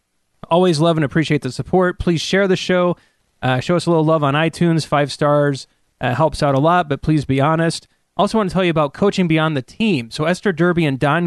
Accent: American